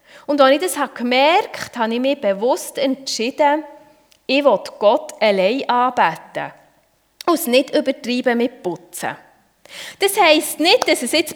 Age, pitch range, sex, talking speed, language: 30-49, 220-300 Hz, female, 155 wpm, German